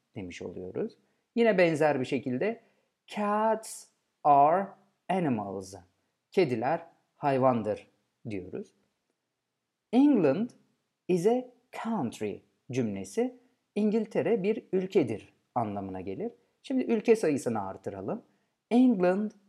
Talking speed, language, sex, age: 85 wpm, Turkish, male, 50-69